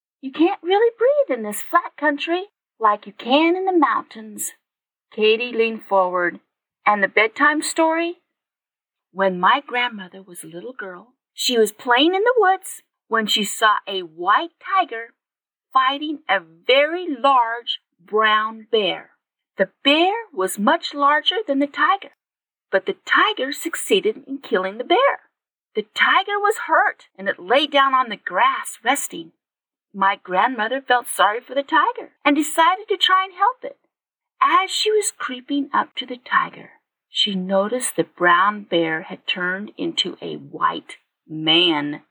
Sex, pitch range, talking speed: female, 205-345 Hz, 150 wpm